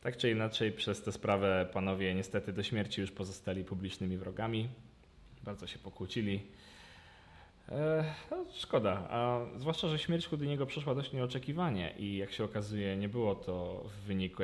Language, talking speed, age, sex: Polish, 150 wpm, 20-39, male